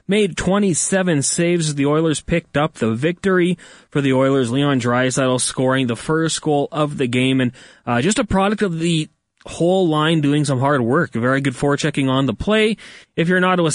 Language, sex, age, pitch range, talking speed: English, male, 20-39, 130-170 Hz, 195 wpm